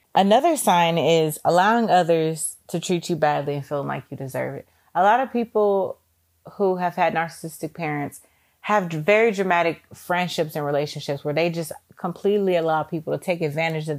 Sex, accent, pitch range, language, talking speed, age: female, American, 155-200 Hz, English, 170 wpm, 30-49